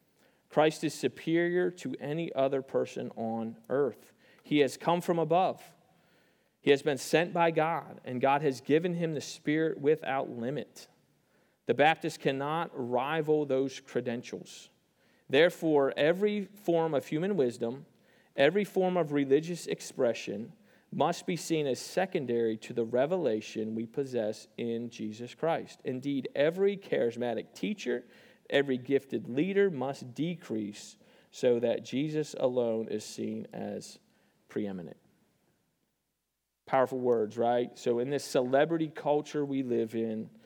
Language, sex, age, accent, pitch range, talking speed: English, male, 40-59, American, 120-155 Hz, 130 wpm